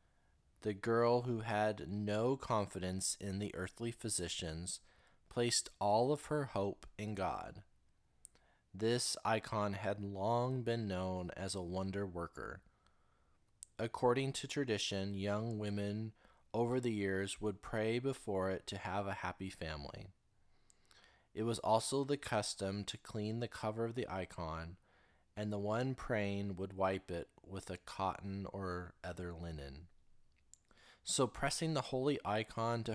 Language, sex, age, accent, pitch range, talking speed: English, male, 20-39, American, 95-115 Hz, 135 wpm